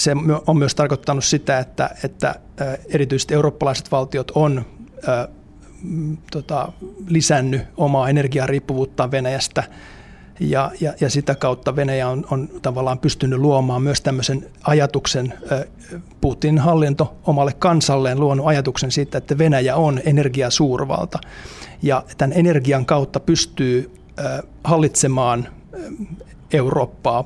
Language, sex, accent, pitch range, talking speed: Finnish, male, native, 135-150 Hz, 90 wpm